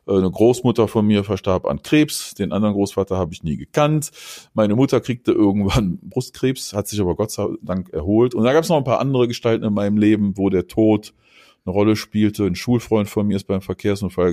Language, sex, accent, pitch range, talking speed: German, male, German, 95-135 Hz, 215 wpm